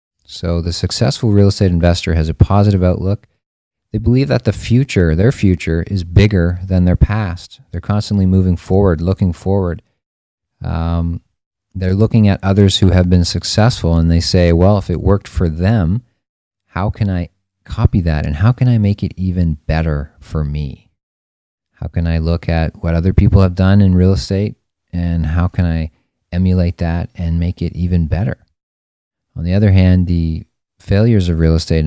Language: English